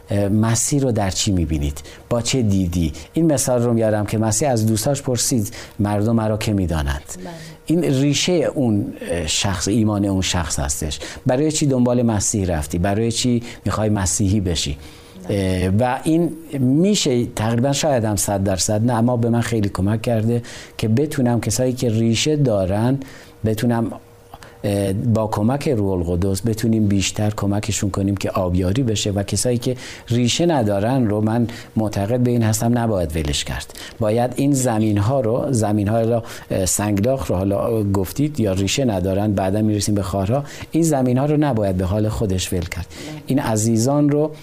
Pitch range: 100-125 Hz